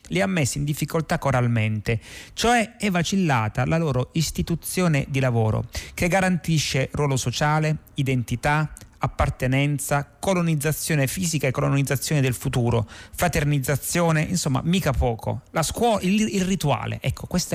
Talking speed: 125 wpm